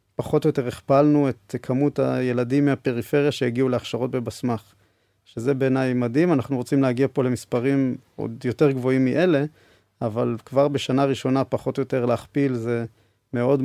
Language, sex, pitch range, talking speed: Hebrew, male, 120-140 Hz, 145 wpm